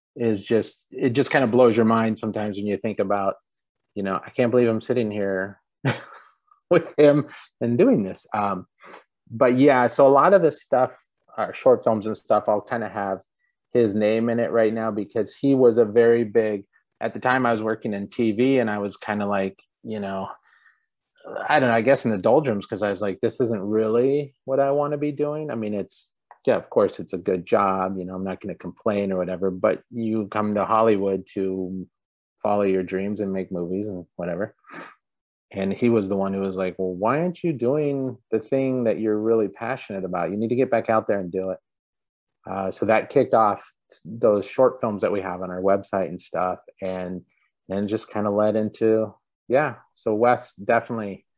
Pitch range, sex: 100-120 Hz, male